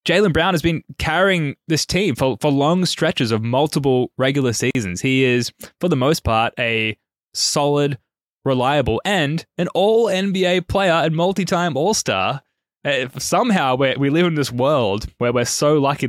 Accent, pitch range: Australian, 110-145 Hz